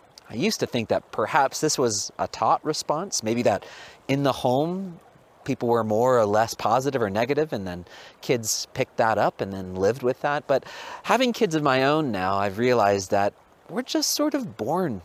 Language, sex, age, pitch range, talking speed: English, male, 30-49, 95-150 Hz, 200 wpm